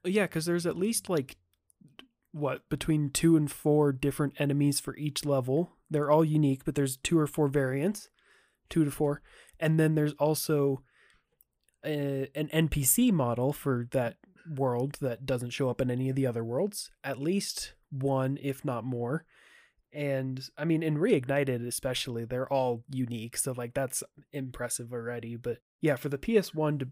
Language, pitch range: English, 125-155 Hz